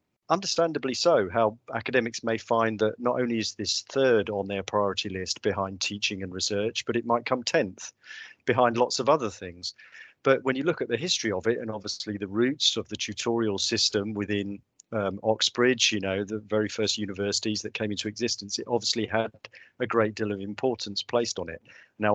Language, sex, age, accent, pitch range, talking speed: English, male, 40-59, British, 100-120 Hz, 195 wpm